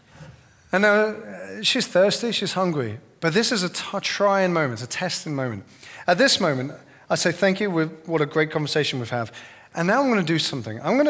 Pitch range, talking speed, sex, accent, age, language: 130-190 Hz, 205 wpm, male, British, 30-49, English